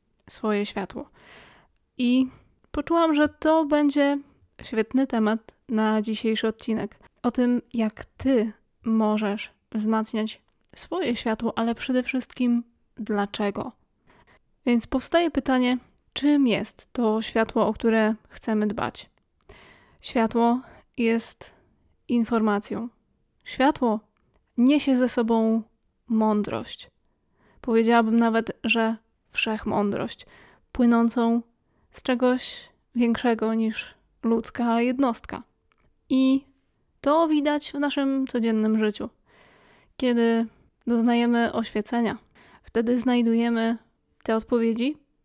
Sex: female